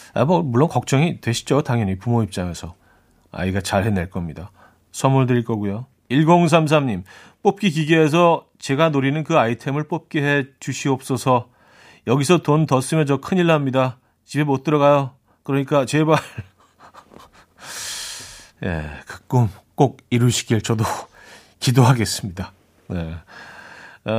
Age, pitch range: 40-59, 110-160 Hz